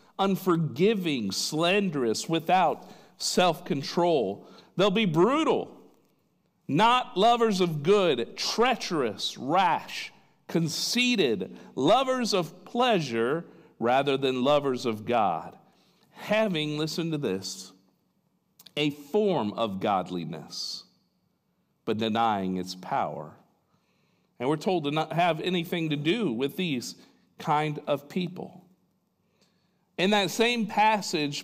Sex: male